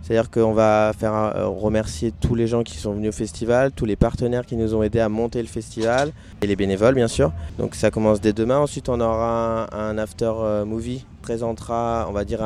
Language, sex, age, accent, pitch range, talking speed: French, male, 20-39, French, 105-120 Hz, 210 wpm